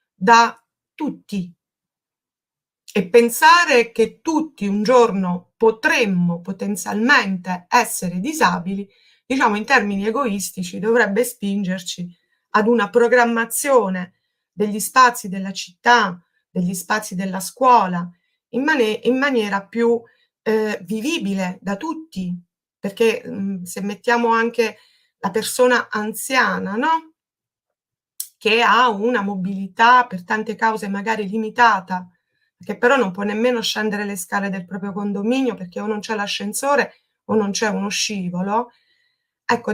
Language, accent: Italian, native